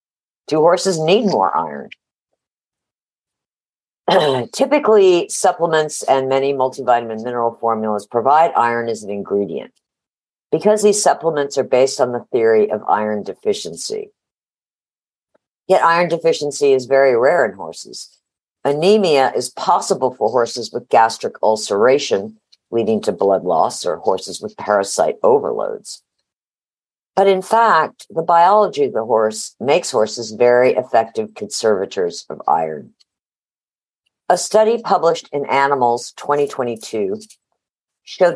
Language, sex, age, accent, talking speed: English, female, 50-69, American, 115 wpm